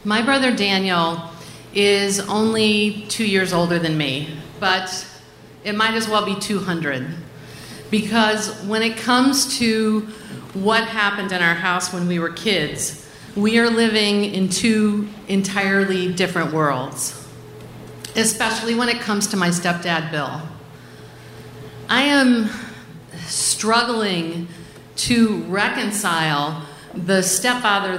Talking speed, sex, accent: 115 wpm, female, American